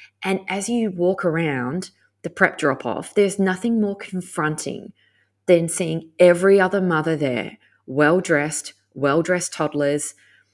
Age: 20-39